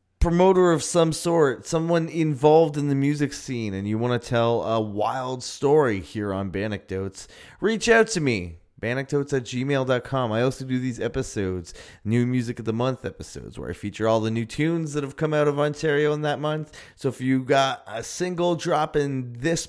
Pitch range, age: 115-150 Hz, 20-39